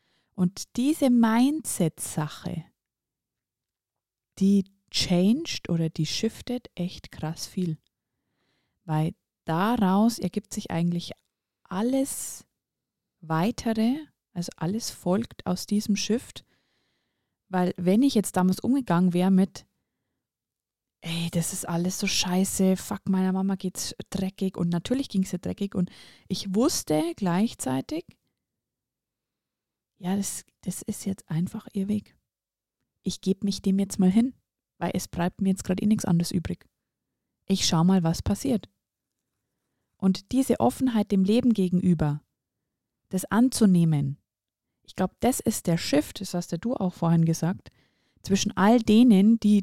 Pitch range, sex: 170-210 Hz, female